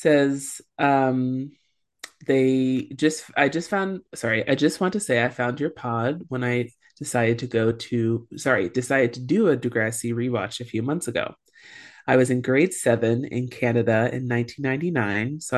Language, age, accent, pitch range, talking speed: English, 30-49, American, 120-140 Hz, 170 wpm